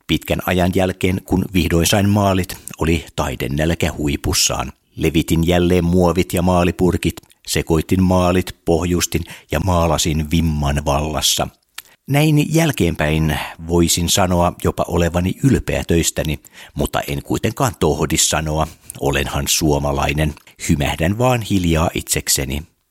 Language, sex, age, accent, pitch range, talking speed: Finnish, male, 60-79, native, 75-95 Hz, 110 wpm